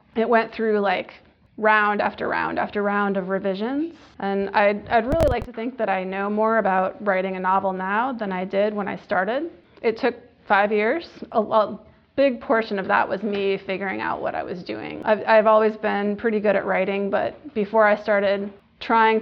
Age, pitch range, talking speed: 20-39, 195-225 Hz, 200 wpm